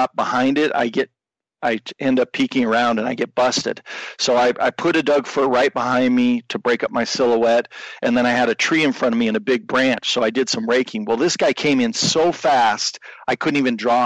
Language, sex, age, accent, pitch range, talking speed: English, male, 40-59, American, 115-140 Hz, 250 wpm